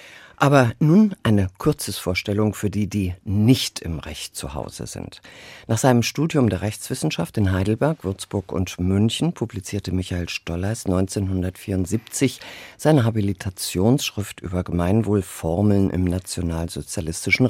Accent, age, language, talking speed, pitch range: German, 50-69, German, 115 wpm, 90-115 Hz